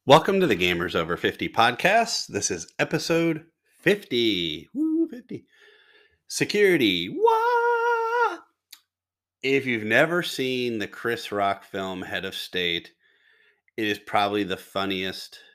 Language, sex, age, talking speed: English, male, 30-49, 120 wpm